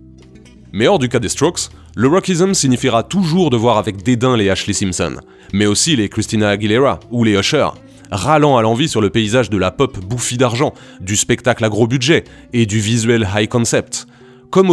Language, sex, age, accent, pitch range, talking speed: French, male, 30-49, French, 100-140 Hz, 190 wpm